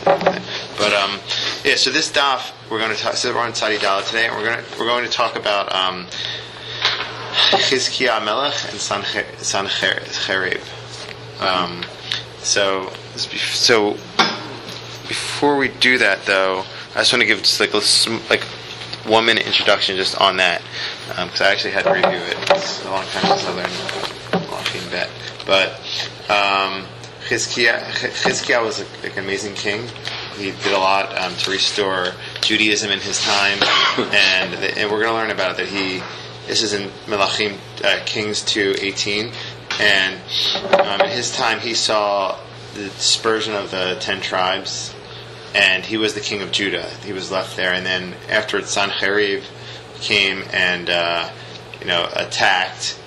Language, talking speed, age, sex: English, 160 wpm, 20-39, male